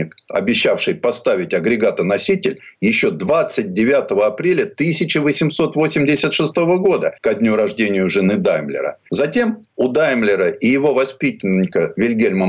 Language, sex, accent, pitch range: Russian, male, native, 135-195 Hz